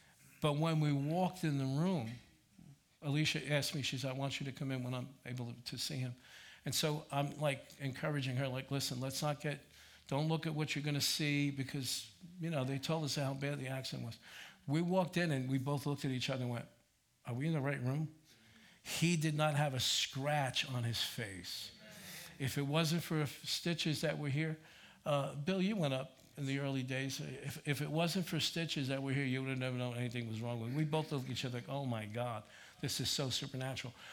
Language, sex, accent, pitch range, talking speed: English, male, American, 130-150 Hz, 230 wpm